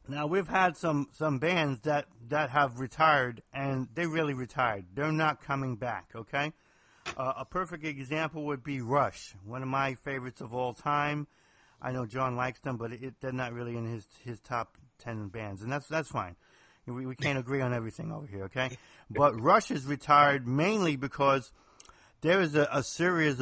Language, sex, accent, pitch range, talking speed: English, male, American, 120-145 Hz, 185 wpm